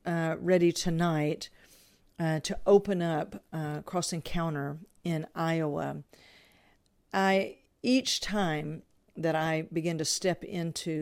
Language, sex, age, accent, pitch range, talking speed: English, female, 50-69, American, 155-180 Hz, 115 wpm